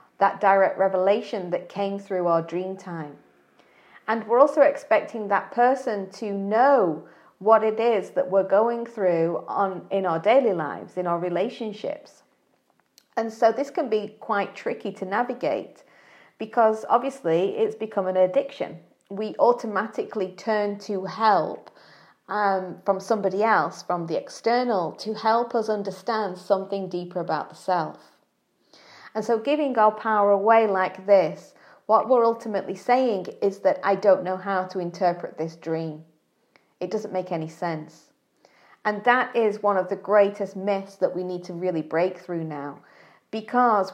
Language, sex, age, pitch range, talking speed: English, female, 40-59, 185-225 Hz, 155 wpm